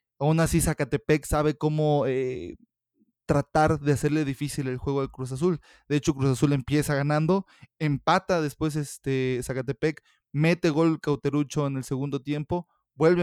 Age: 20-39